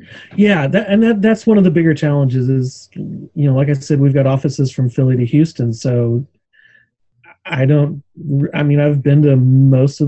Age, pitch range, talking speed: 30-49, 125-150 Hz, 195 wpm